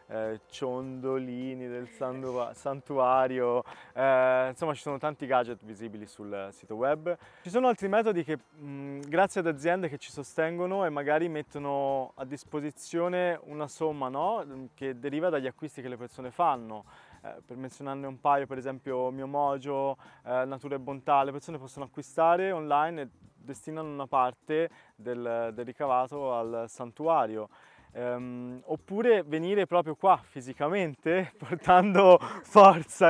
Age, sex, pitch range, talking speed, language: 20-39, male, 130-155 Hz, 135 wpm, Italian